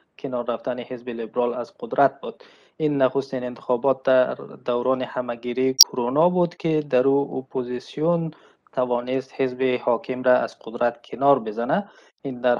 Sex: male